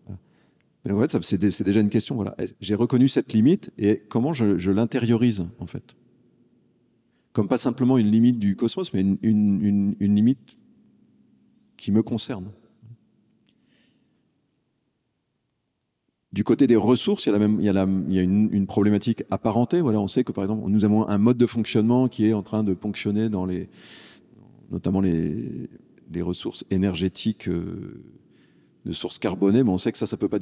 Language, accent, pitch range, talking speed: French, French, 95-120 Hz, 150 wpm